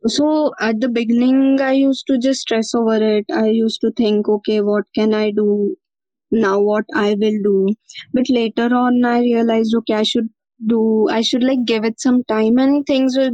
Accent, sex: Indian, female